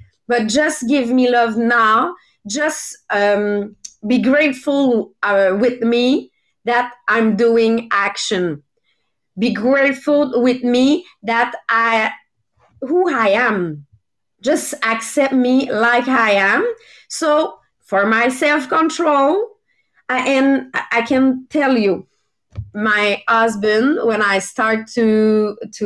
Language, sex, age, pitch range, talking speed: English, female, 30-49, 200-270 Hz, 110 wpm